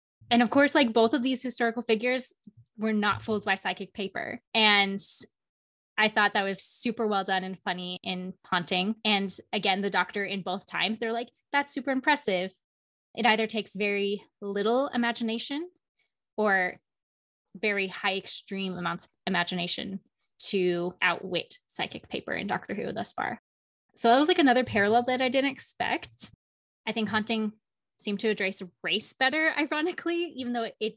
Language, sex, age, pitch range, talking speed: English, female, 20-39, 190-230 Hz, 160 wpm